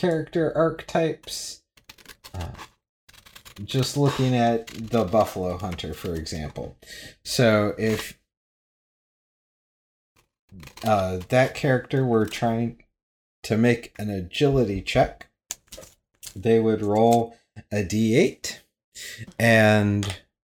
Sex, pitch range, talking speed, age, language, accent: male, 90-115 Hz, 85 wpm, 30-49, English, American